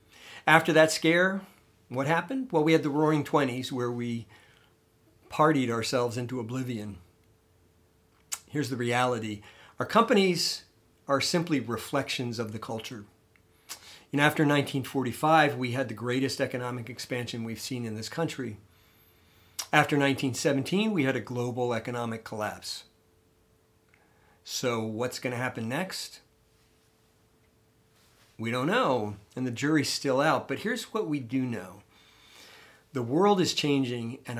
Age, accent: 50-69, American